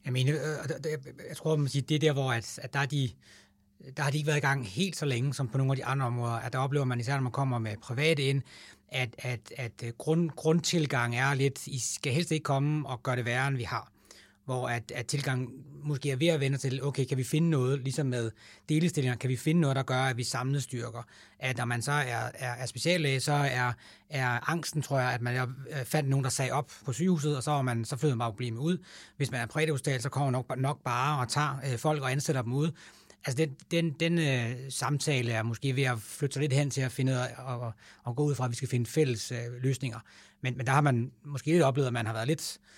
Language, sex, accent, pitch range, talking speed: English, male, Danish, 125-145 Hz, 255 wpm